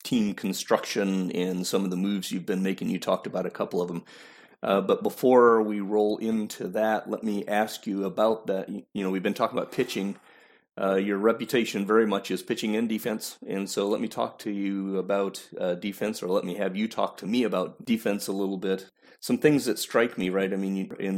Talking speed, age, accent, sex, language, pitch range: 220 wpm, 40-59, American, male, English, 95-110 Hz